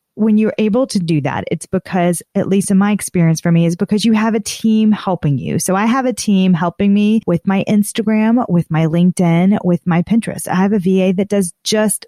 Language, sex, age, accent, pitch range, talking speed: English, female, 30-49, American, 185-230 Hz, 230 wpm